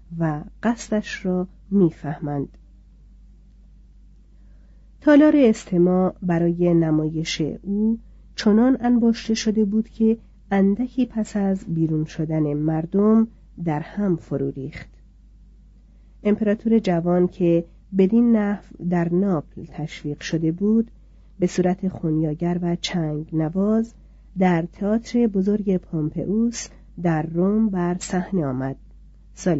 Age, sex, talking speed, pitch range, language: 40-59, female, 100 wpm, 170-220 Hz, Persian